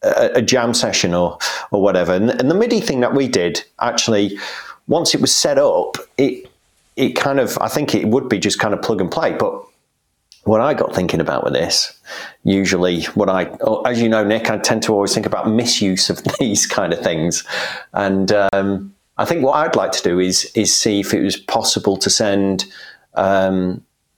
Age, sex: 40-59, male